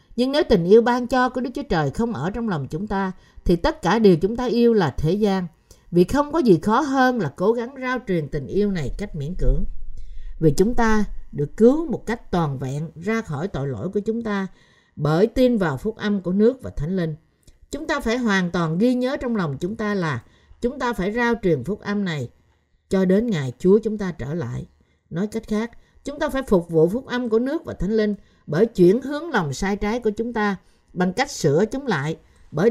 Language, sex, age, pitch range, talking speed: Vietnamese, female, 50-69, 160-230 Hz, 235 wpm